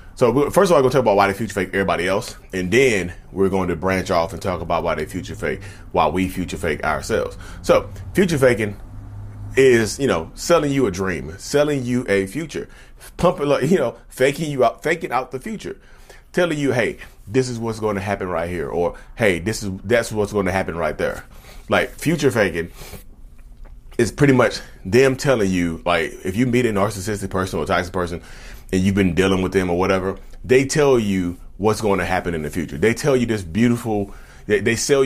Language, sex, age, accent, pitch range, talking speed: English, male, 30-49, American, 90-115 Hz, 210 wpm